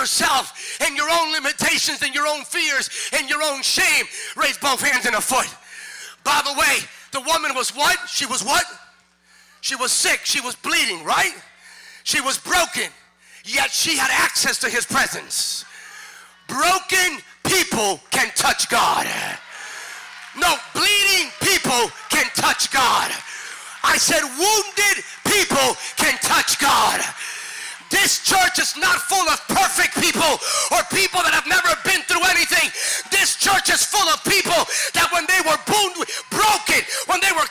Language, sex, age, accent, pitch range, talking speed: English, male, 40-59, American, 300-390 Hz, 150 wpm